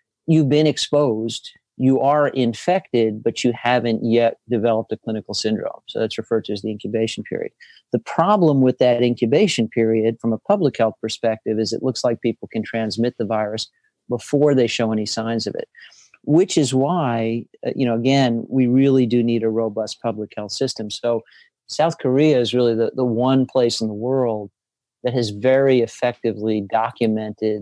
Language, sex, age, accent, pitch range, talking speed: English, male, 50-69, American, 110-130 Hz, 175 wpm